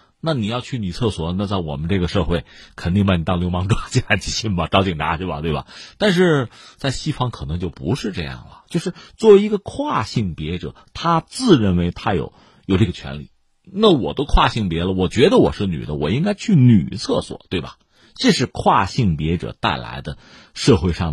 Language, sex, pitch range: Chinese, male, 90-140 Hz